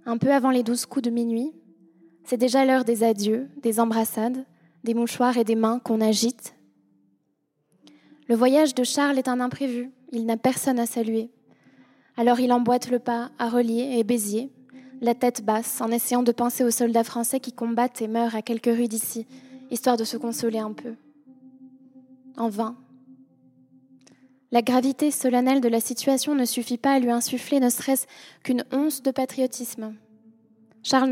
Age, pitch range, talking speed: 20-39, 230-260 Hz, 170 wpm